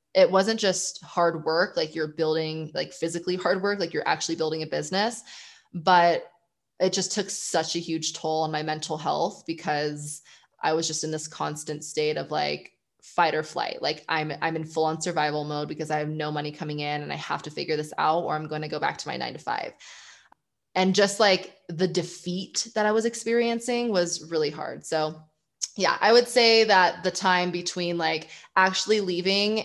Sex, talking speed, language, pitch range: female, 200 wpm, English, 160-195 Hz